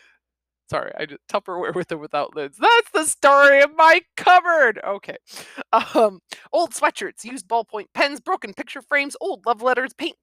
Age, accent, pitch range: 30-49, American, 150-240 Hz